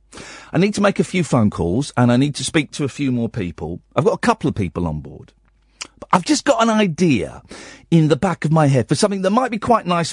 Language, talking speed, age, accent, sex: English, 265 wpm, 50-69, British, male